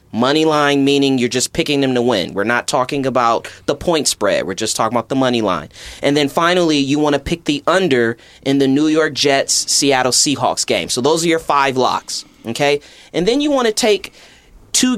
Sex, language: male, English